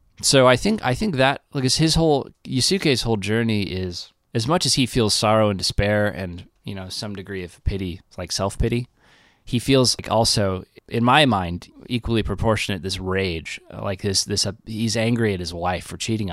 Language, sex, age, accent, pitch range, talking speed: English, male, 20-39, American, 95-115 Hz, 195 wpm